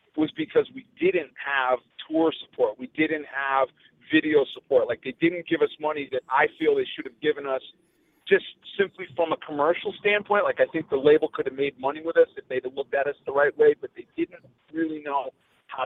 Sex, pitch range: male, 140-200 Hz